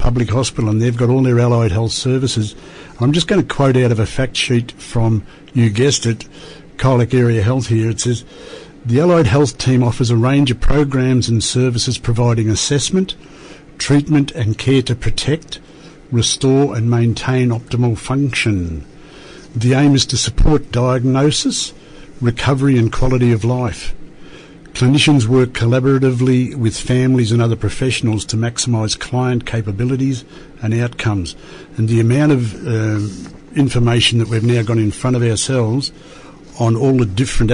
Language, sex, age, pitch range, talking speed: English, male, 60-79, 115-135 Hz, 155 wpm